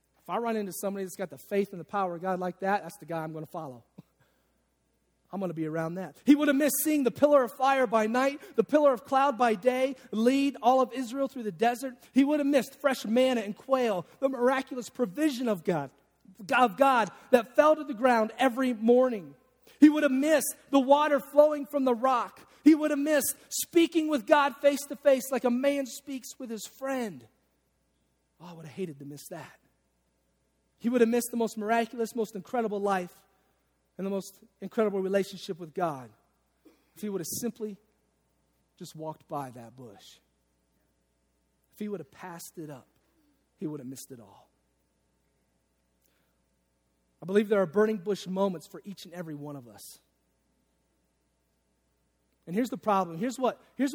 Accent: American